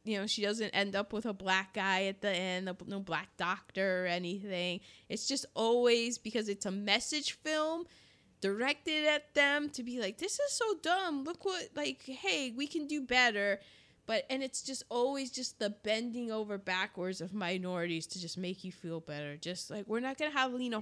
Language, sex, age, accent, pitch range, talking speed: English, female, 20-39, American, 185-265 Hz, 200 wpm